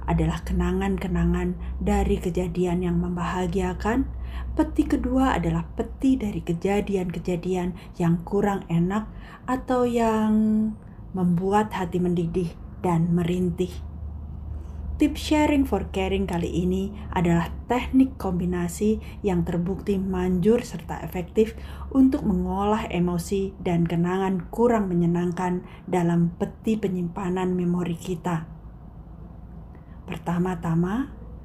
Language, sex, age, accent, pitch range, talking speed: Indonesian, female, 20-39, native, 170-200 Hz, 95 wpm